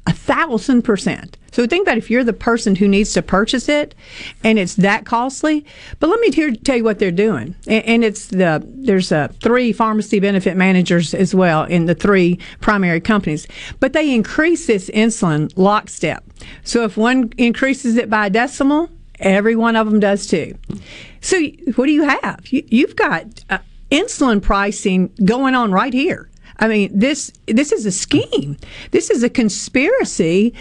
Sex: female